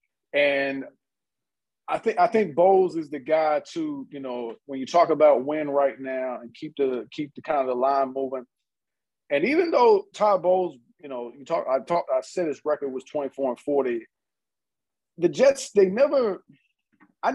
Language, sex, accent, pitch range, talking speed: English, male, American, 140-185 Hz, 185 wpm